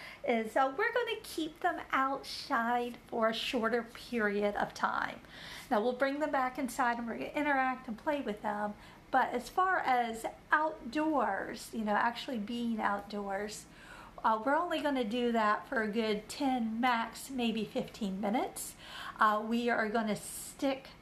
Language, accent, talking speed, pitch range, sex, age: English, American, 160 wpm, 225-300 Hz, female, 50-69